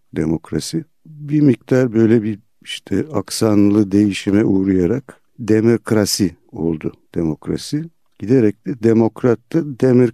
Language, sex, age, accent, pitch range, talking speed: Turkish, male, 60-79, native, 90-120 Hz, 100 wpm